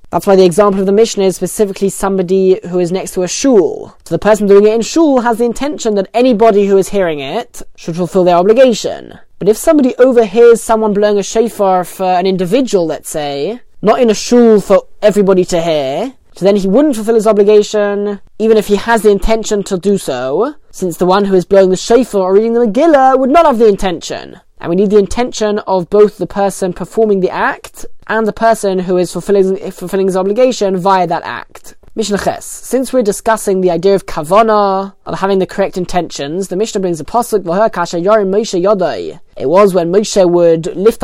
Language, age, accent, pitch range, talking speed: English, 20-39, British, 185-225 Hz, 210 wpm